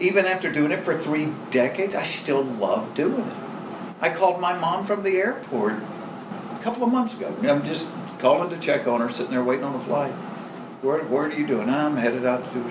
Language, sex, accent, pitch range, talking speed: English, male, American, 145-210 Hz, 225 wpm